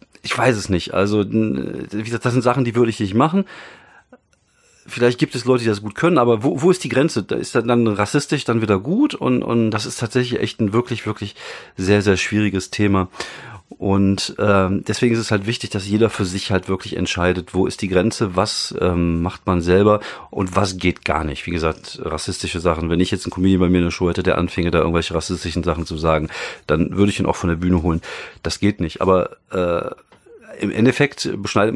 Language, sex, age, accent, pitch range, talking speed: German, male, 40-59, German, 95-115 Hz, 220 wpm